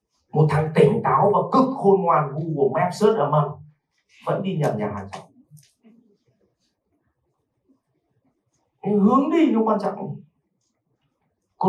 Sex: male